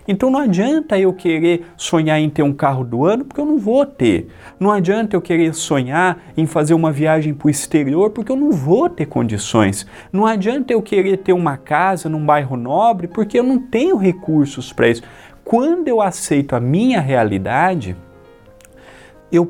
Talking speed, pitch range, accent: 180 wpm, 150-185 Hz, Brazilian